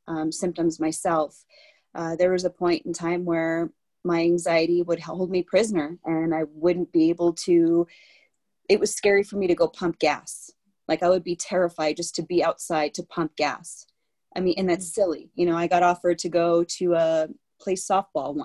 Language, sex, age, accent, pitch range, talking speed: English, female, 30-49, American, 165-195 Hz, 195 wpm